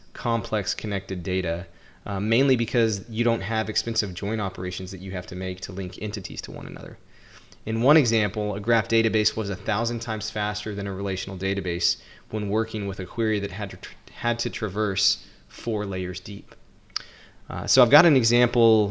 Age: 20-39